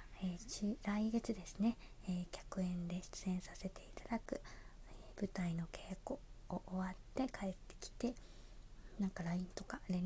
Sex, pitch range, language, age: female, 180-230 Hz, Japanese, 20-39